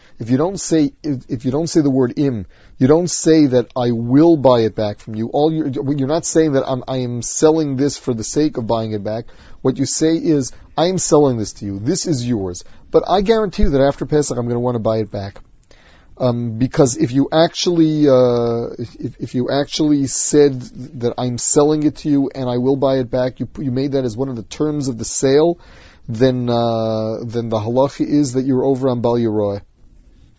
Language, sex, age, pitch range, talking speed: English, male, 40-59, 120-145 Hz, 225 wpm